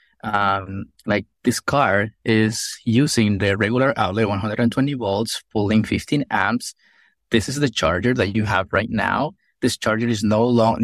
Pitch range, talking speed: 105-125 Hz, 155 wpm